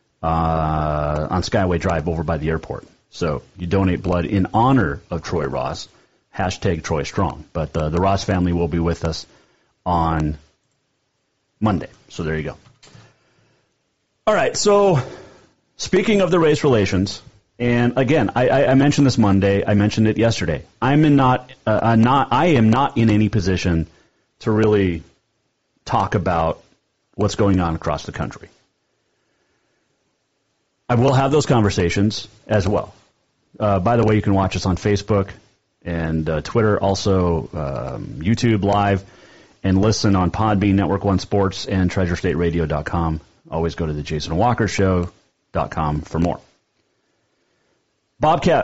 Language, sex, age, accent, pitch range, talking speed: English, male, 40-59, American, 85-115 Hz, 145 wpm